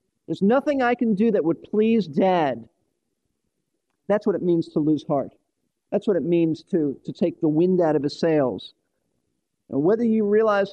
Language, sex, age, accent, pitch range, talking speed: English, male, 50-69, American, 165-215 Hz, 185 wpm